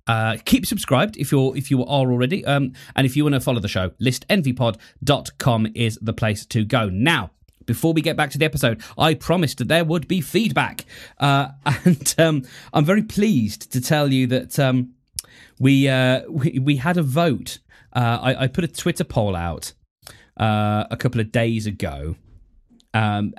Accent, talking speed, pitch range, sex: British, 185 wpm, 115-160 Hz, male